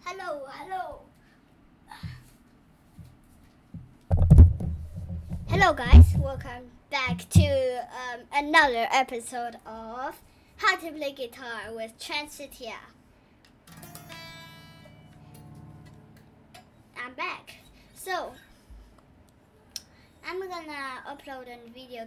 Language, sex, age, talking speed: English, male, 10-29, 70 wpm